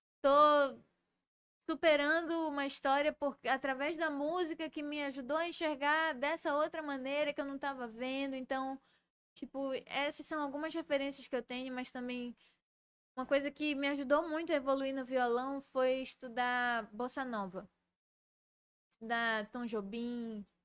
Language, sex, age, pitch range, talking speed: Portuguese, female, 20-39, 230-275 Hz, 140 wpm